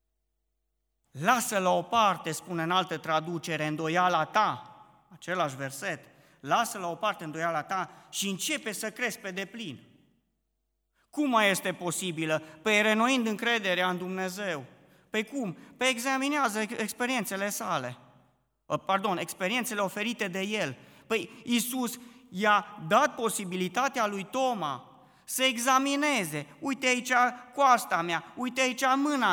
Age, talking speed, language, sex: 30-49, 125 wpm, Romanian, male